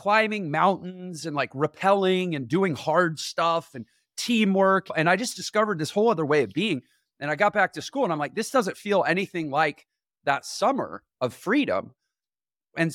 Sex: male